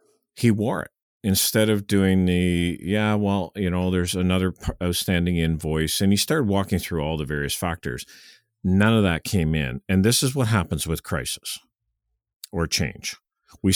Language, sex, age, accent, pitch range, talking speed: English, male, 50-69, American, 80-100 Hz, 170 wpm